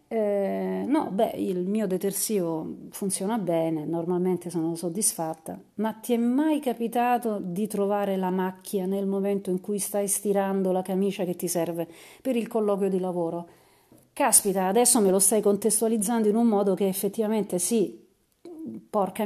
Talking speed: 155 wpm